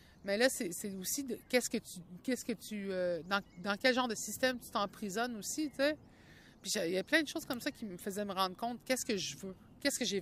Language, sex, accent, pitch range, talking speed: French, female, Canadian, 190-250 Hz, 265 wpm